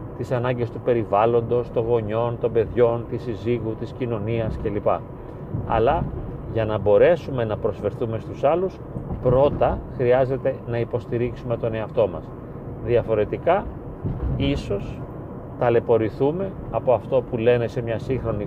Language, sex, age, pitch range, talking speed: Greek, male, 40-59, 115-130 Hz, 125 wpm